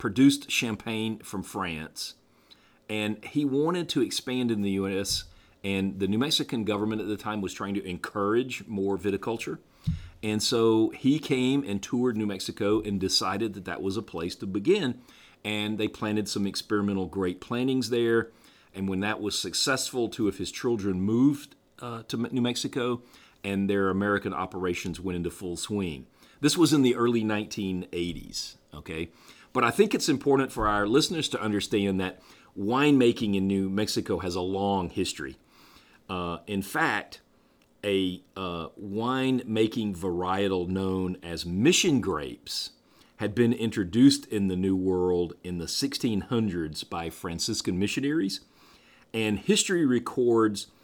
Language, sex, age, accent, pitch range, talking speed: English, male, 40-59, American, 95-115 Hz, 150 wpm